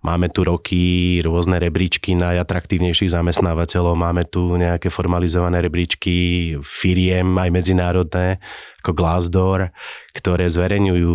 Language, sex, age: Slovak, male, 30-49